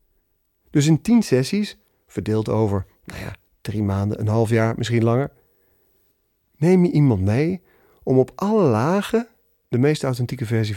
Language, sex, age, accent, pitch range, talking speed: Dutch, male, 40-59, Dutch, 110-140 Hz, 140 wpm